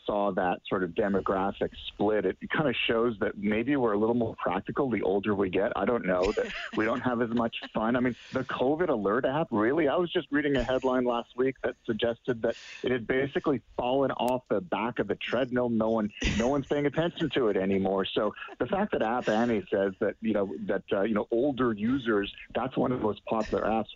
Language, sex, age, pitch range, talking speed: English, male, 40-59, 105-130 Hz, 225 wpm